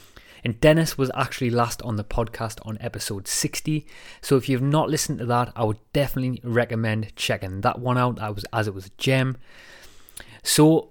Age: 20-39